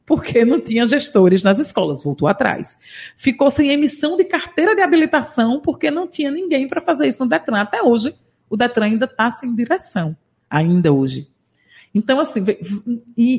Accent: Brazilian